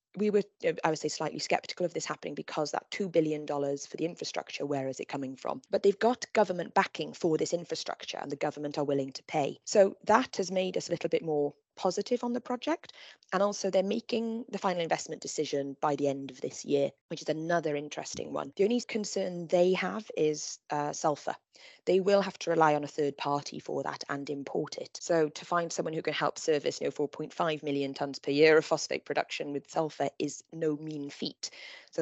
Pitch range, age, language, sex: 145-205 Hz, 20-39, English, female